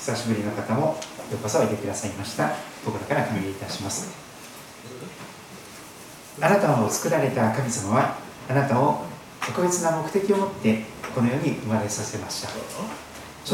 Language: Japanese